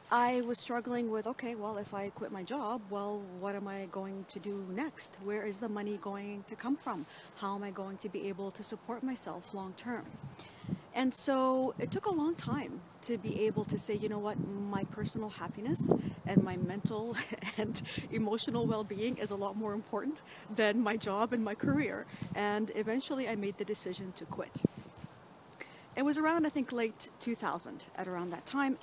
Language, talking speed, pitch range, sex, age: English, 195 wpm, 200-250 Hz, female, 40-59